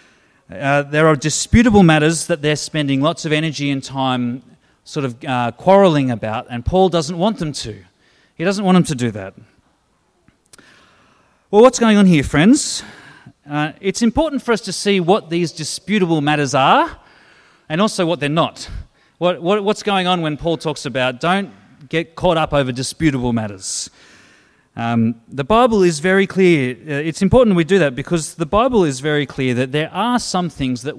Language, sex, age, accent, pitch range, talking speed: English, male, 30-49, Australian, 130-185 Hz, 175 wpm